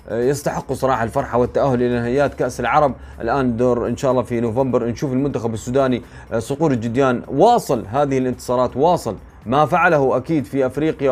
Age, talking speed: 30-49, 155 wpm